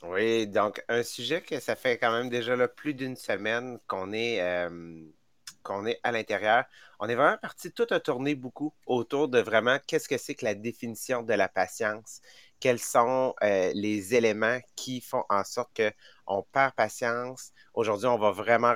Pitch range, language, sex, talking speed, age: 110-130 Hz, English, male, 185 wpm, 30-49